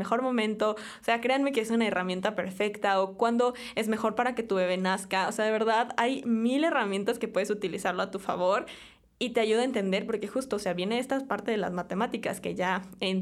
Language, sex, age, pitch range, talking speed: Spanish, female, 20-39, 190-225 Hz, 225 wpm